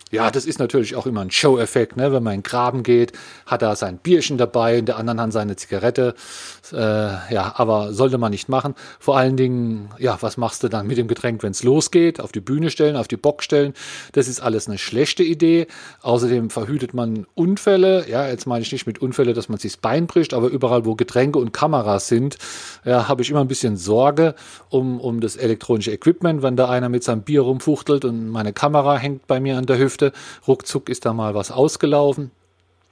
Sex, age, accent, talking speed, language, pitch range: male, 40-59, German, 215 wpm, German, 110-135 Hz